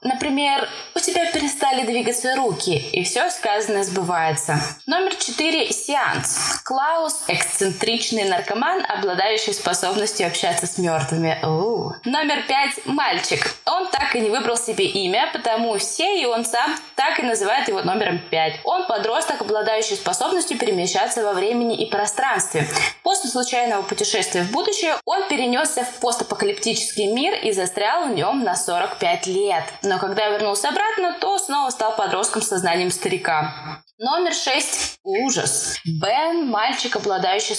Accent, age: native, 20-39